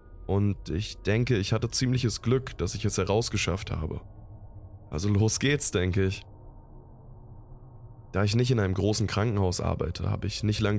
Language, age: German, 20-39